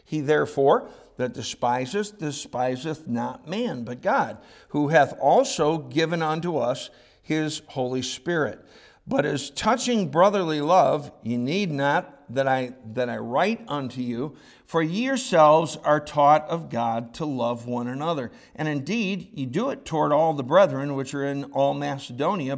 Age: 50-69